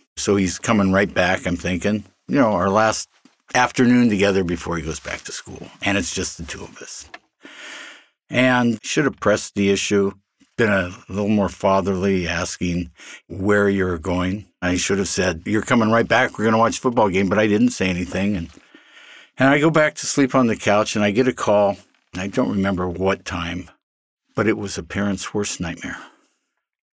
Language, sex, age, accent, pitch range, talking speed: English, male, 60-79, American, 90-105 Hz, 195 wpm